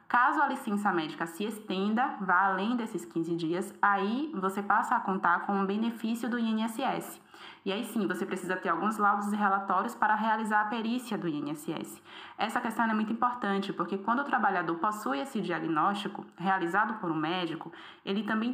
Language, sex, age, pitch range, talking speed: Portuguese, female, 20-39, 180-230 Hz, 180 wpm